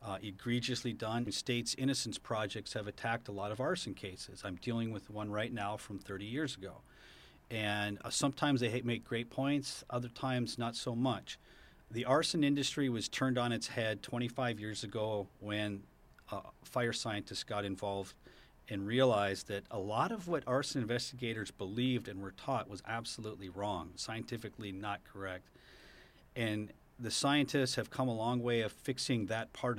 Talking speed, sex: 165 wpm, male